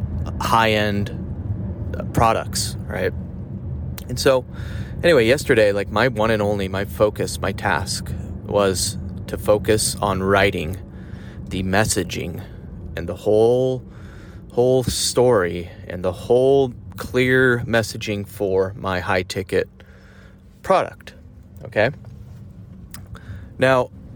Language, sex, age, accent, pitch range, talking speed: English, male, 30-49, American, 95-115 Hz, 95 wpm